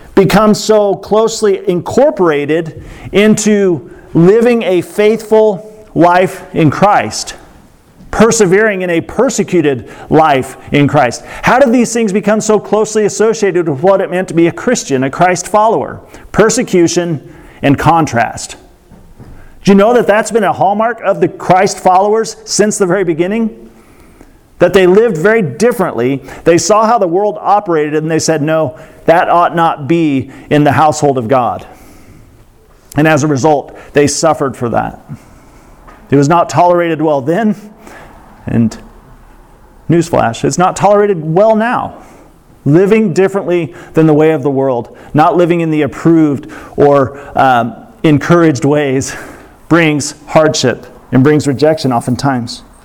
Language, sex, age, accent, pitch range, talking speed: English, male, 40-59, American, 150-205 Hz, 140 wpm